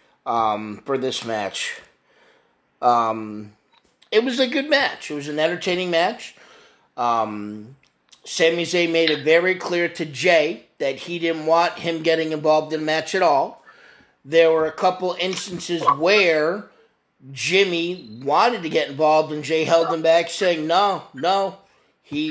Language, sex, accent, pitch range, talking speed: English, male, American, 125-170 Hz, 150 wpm